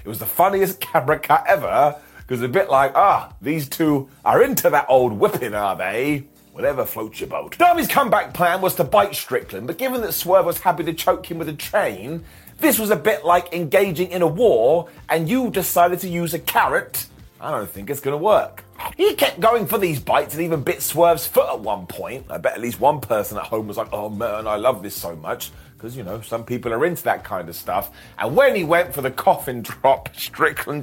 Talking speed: 230 wpm